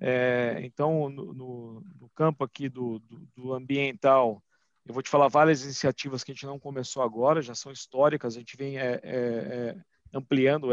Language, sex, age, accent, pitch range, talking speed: Portuguese, male, 50-69, Brazilian, 130-160 Hz, 185 wpm